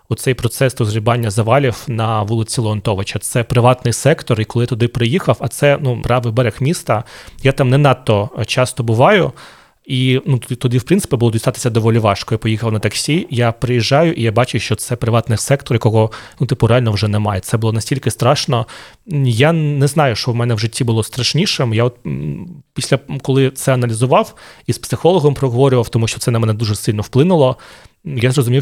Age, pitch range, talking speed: 30-49, 115-135 Hz, 185 wpm